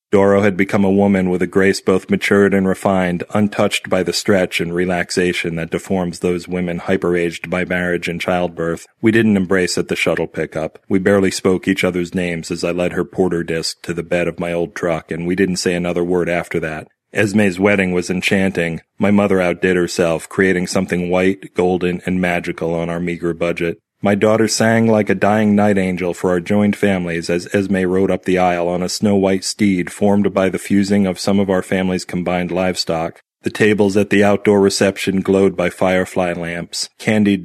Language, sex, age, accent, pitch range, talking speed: English, male, 40-59, American, 90-100 Hz, 195 wpm